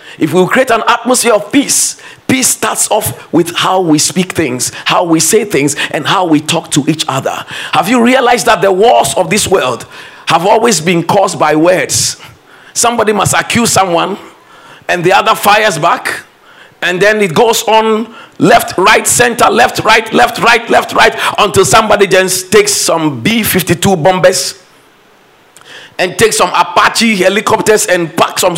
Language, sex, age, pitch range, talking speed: English, male, 50-69, 155-220 Hz, 165 wpm